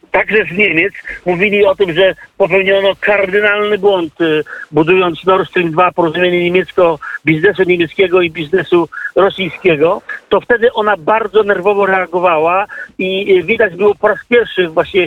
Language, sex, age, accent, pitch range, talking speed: Polish, male, 50-69, native, 180-205 Hz, 135 wpm